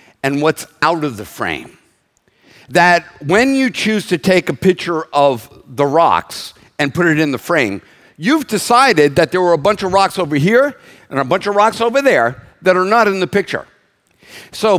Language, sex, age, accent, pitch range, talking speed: English, male, 50-69, American, 150-205 Hz, 195 wpm